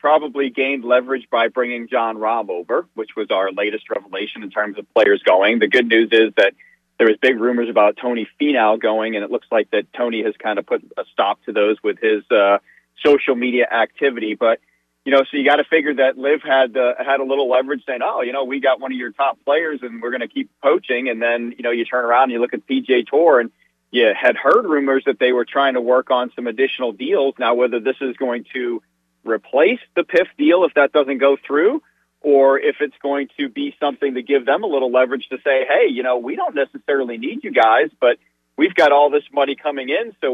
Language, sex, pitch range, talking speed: English, male, 120-140 Hz, 240 wpm